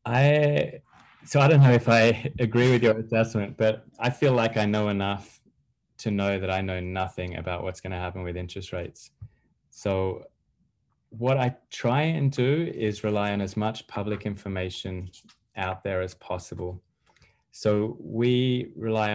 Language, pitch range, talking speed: English, 95-115 Hz, 165 wpm